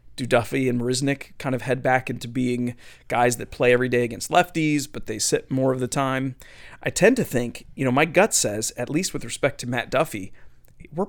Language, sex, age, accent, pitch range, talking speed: English, male, 30-49, American, 120-145 Hz, 220 wpm